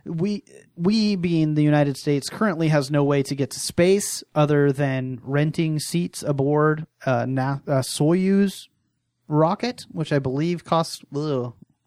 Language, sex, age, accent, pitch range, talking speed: English, male, 30-49, American, 130-160 Hz, 145 wpm